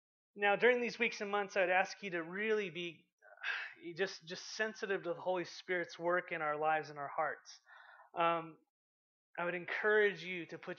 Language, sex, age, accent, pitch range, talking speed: English, male, 30-49, American, 165-200 Hz, 185 wpm